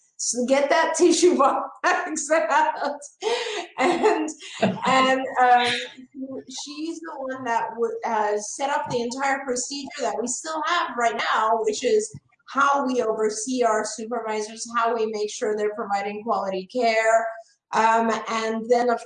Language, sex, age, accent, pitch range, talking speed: English, female, 30-49, American, 215-265 Hz, 140 wpm